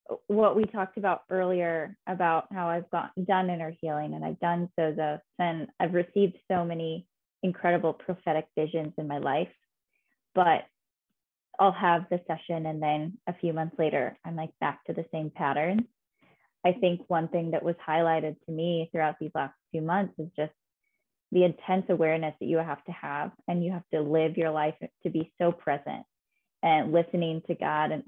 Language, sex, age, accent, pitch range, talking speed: English, female, 20-39, American, 160-185 Hz, 185 wpm